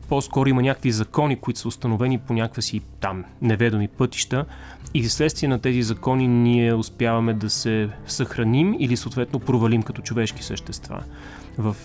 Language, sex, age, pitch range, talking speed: Bulgarian, male, 30-49, 110-130 Hz, 150 wpm